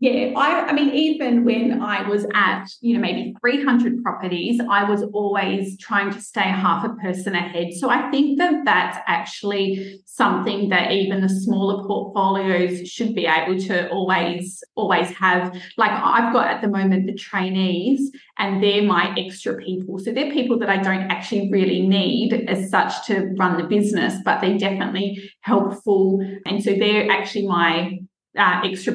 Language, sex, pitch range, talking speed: English, female, 190-230 Hz, 170 wpm